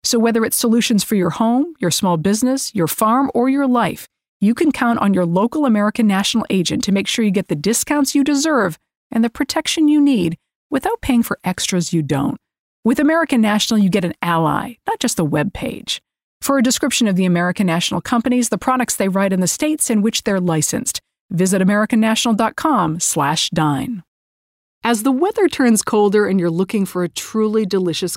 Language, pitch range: English, 175-245 Hz